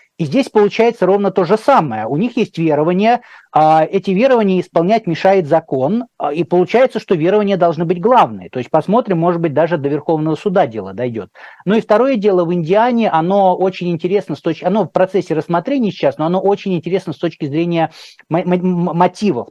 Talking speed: 180 wpm